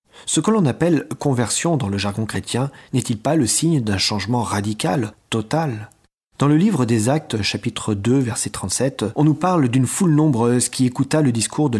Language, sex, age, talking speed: French, male, 40-59, 190 wpm